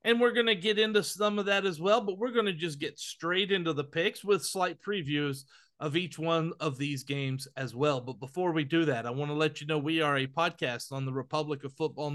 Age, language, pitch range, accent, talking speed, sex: 40-59, English, 140-190 Hz, American, 255 wpm, male